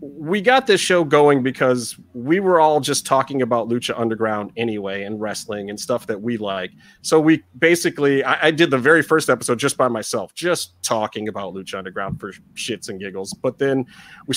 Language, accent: English, American